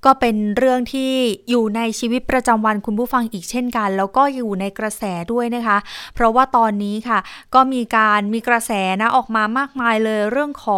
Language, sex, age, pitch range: Thai, female, 20-39, 215-260 Hz